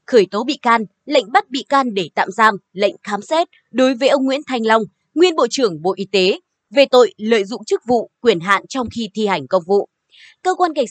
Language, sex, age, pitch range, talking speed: Vietnamese, female, 20-39, 200-290 Hz, 235 wpm